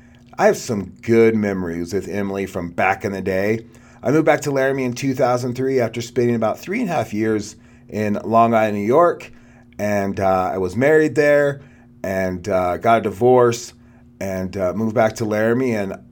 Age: 30-49